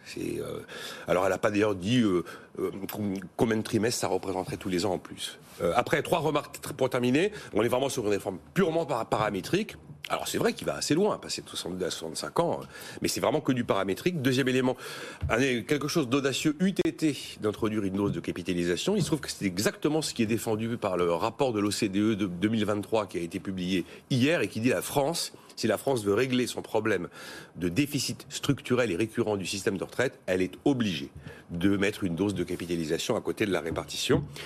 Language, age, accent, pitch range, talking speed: French, 40-59, French, 95-130 Hz, 210 wpm